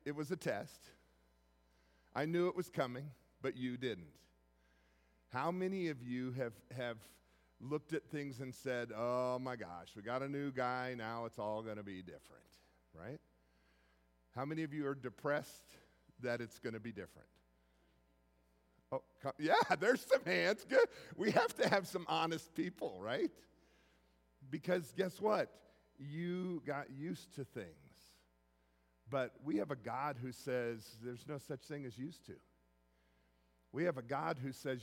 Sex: male